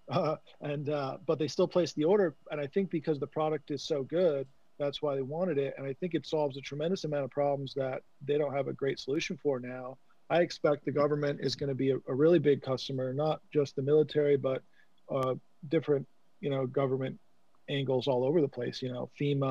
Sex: male